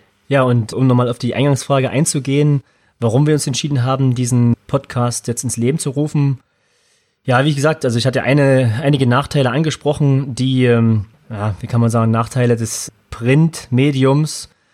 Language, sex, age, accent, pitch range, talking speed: German, male, 30-49, German, 115-135 Hz, 155 wpm